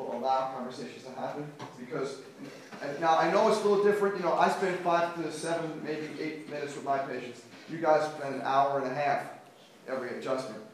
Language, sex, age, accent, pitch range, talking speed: English, male, 40-59, American, 135-180 Hz, 195 wpm